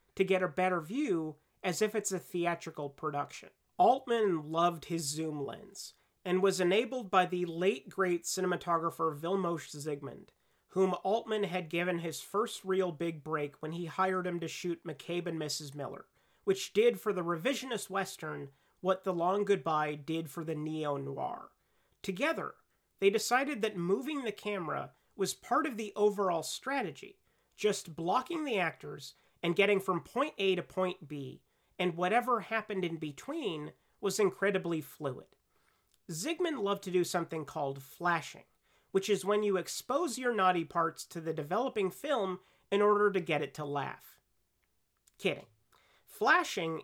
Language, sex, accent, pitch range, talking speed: English, male, American, 165-210 Hz, 155 wpm